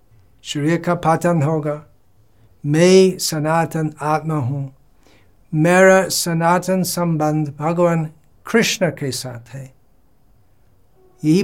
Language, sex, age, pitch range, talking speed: Hindi, male, 60-79, 120-175 Hz, 90 wpm